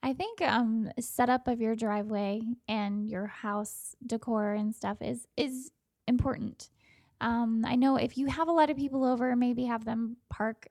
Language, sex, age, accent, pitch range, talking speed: English, female, 10-29, American, 215-255 Hz, 175 wpm